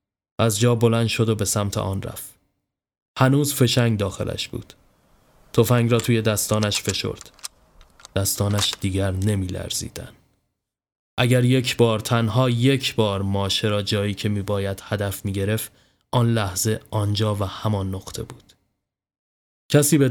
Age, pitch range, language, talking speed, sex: 20-39, 100-125 Hz, Persian, 135 wpm, male